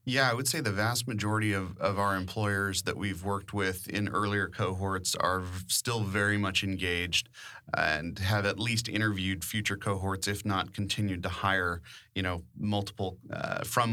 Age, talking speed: 30-49, 170 wpm